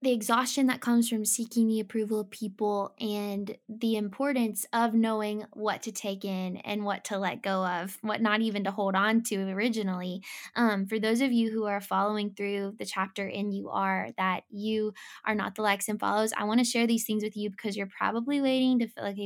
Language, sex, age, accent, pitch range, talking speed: English, female, 10-29, American, 205-245 Hz, 220 wpm